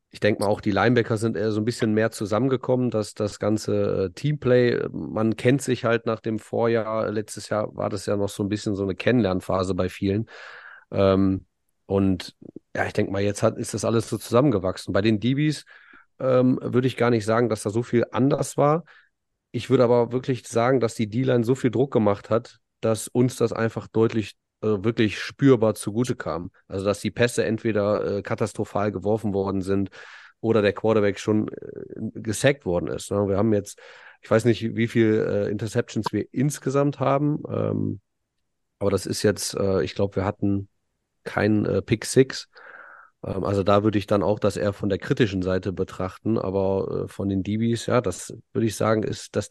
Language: German